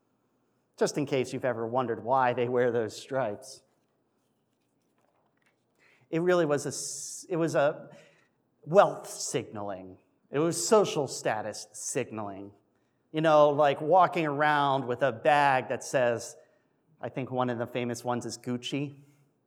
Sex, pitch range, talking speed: male, 115-150 Hz, 130 wpm